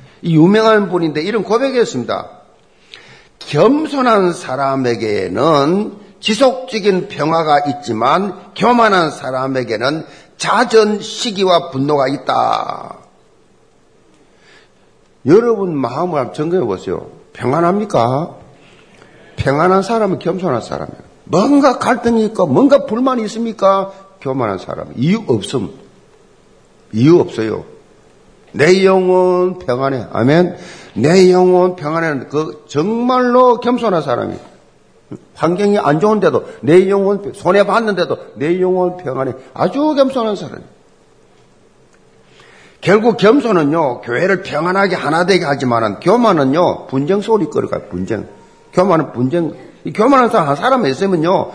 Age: 50-69